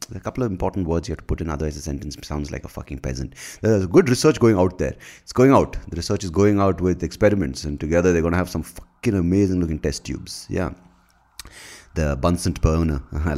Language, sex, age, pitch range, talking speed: English, male, 30-49, 75-110 Hz, 230 wpm